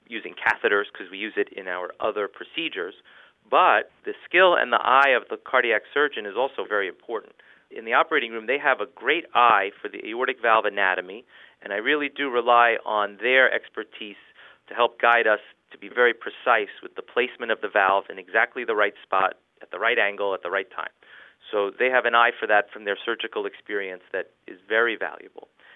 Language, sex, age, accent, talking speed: English, male, 40-59, American, 205 wpm